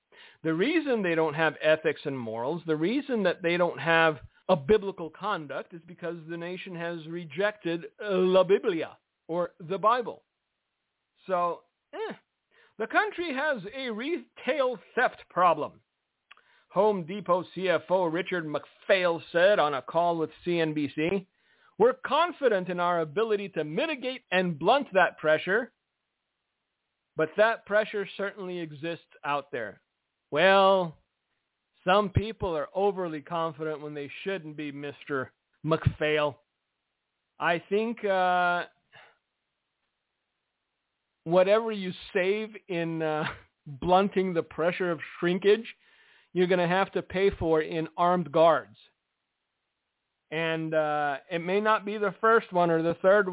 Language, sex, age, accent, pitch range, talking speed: English, male, 50-69, American, 160-200 Hz, 125 wpm